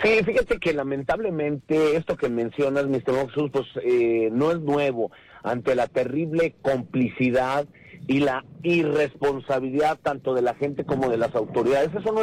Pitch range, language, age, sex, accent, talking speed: 140-185 Hz, English, 50-69, male, Mexican, 150 wpm